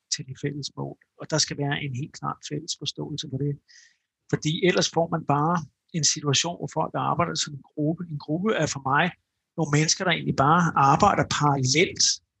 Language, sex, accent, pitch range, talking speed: Danish, male, native, 140-165 Hz, 195 wpm